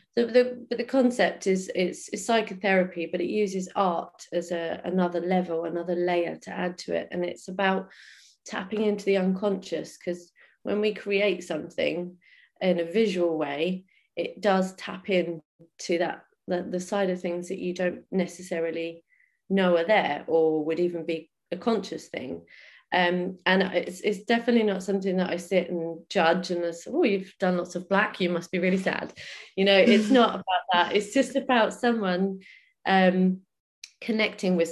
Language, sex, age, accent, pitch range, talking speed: English, female, 30-49, British, 175-200 Hz, 175 wpm